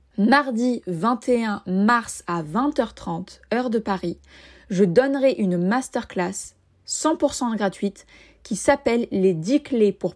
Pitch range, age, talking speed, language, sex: 200-260 Hz, 20-39, 130 wpm, French, female